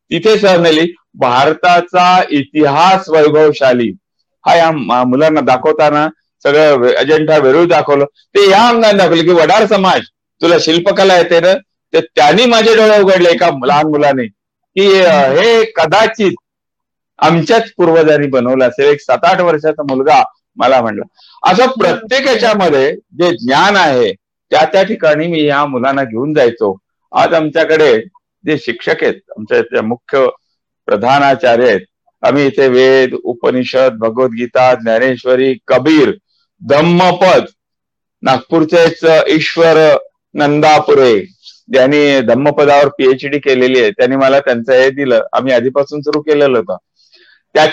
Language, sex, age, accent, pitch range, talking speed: Hindi, male, 50-69, native, 140-195 Hz, 80 wpm